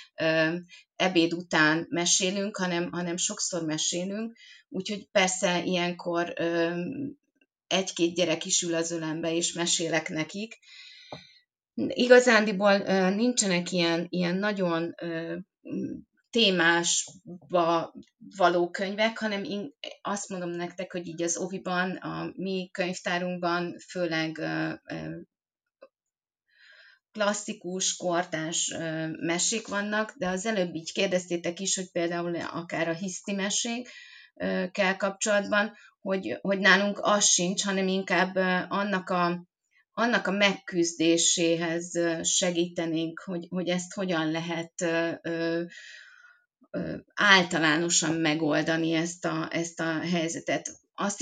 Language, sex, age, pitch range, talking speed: Hungarian, female, 30-49, 165-195 Hz, 95 wpm